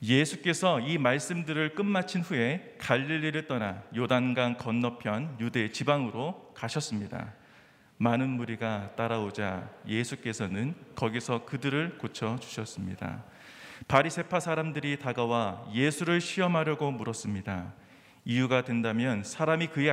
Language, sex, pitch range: Korean, male, 115-150 Hz